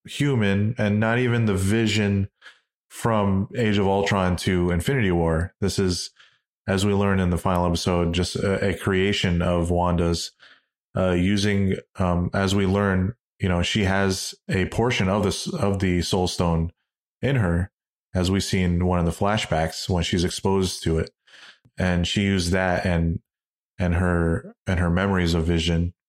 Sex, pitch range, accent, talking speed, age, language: male, 90-100 Hz, American, 170 wpm, 30-49, English